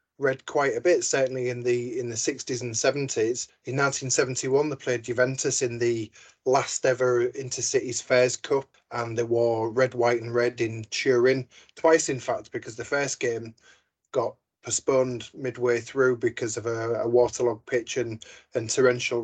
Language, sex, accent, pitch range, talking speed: English, male, British, 120-135 Hz, 165 wpm